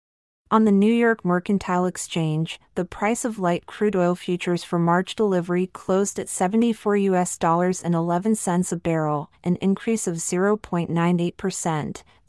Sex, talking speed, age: female, 145 wpm, 30-49